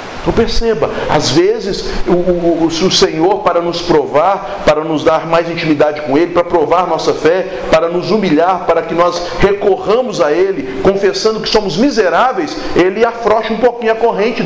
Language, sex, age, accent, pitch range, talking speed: Portuguese, male, 40-59, Brazilian, 150-205 Hz, 175 wpm